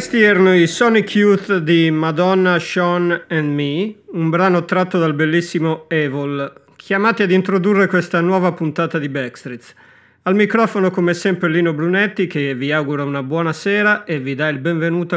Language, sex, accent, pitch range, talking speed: Italian, male, native, 150-190 Hz, 160 wpm